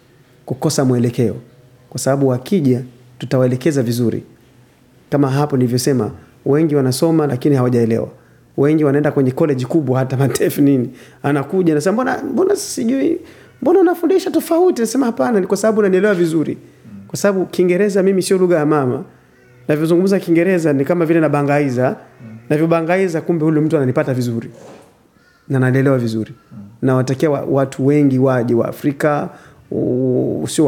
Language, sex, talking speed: Swahili, male, 135 wpm